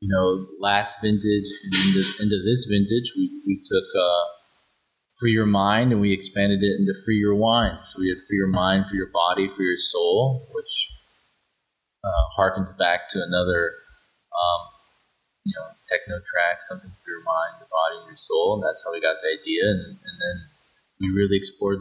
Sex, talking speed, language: male, 185 wpm, English